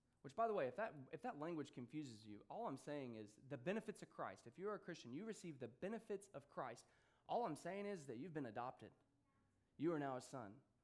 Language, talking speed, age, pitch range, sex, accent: English, 240 wpm, 20-39, 120-180 Hz, male, American